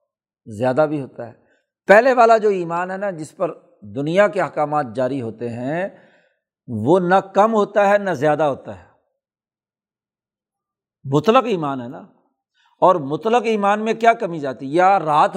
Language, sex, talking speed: Urdu, male, 155 wpm